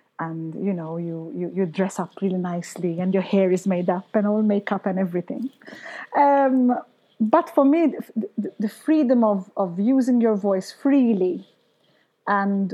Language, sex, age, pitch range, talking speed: English, female, 30-49, 190-245 Hz, 165 wpm